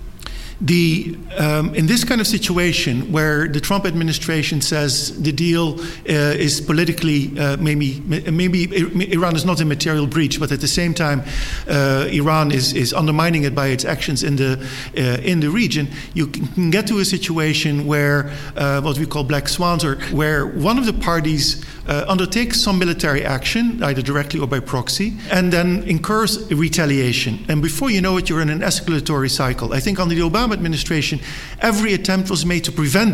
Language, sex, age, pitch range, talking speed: English, male, 50-69, 145-175 Hz, 185 wpm